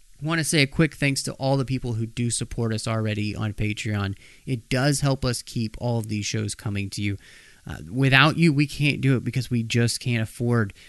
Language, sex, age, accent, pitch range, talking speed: English, male, 30-49, American, 110-145 Hz, 230 wpm